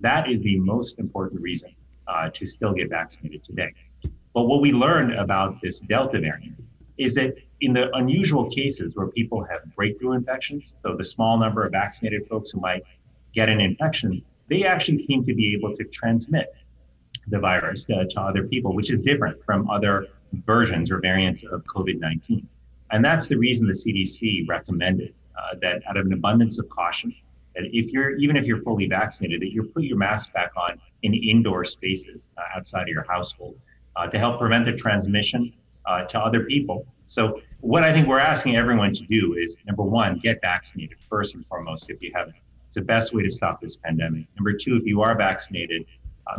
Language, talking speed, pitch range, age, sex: English, 190 wpm, 95-120 Hz, 30-49, male